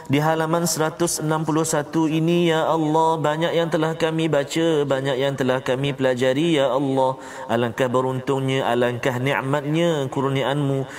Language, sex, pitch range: Malayalam, male, 120-160 Hz